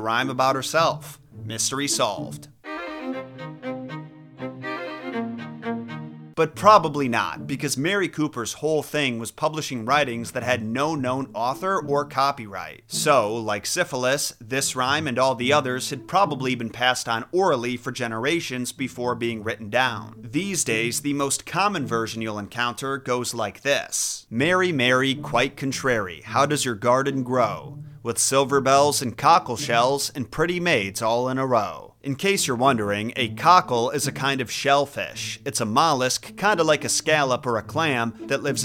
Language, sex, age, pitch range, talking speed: English, male, 30-49, 115-145 Hz, 155 wpm